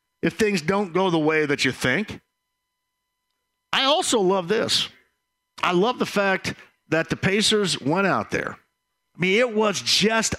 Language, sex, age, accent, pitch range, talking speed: English, male, 50-69, American, 145-200 Hz, 160 wpm